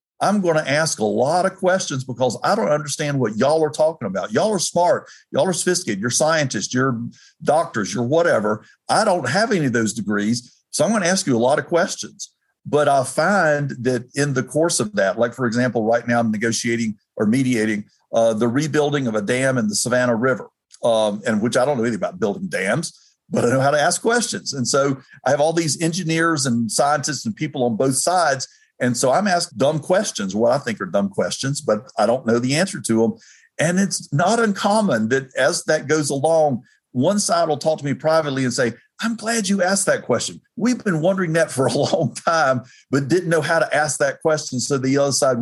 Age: 50-69